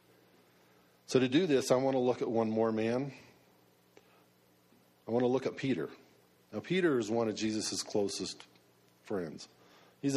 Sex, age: male, 50-69